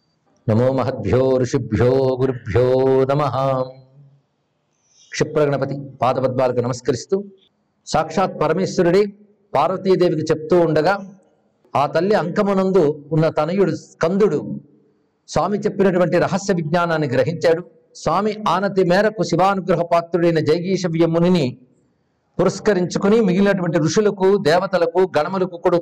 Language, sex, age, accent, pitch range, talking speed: Telugu, male, 50-69, native, 155-200 Hz, 85 wpm